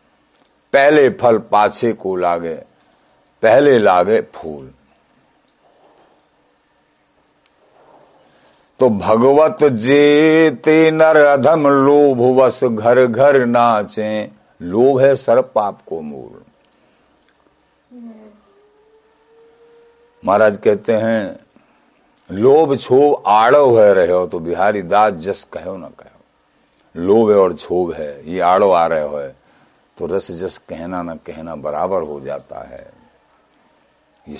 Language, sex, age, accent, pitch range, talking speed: Hindi, male, 60-79, native, 95-155 Hz, 105 wpm